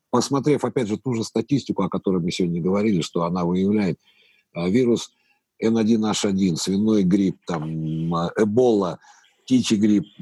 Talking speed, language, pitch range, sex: 135 wpm, Russian, 90-115 Hz, male